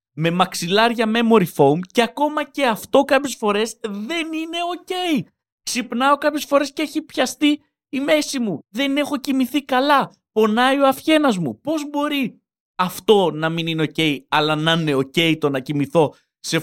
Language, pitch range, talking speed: Greek, 165-260 Hz, 160 wpm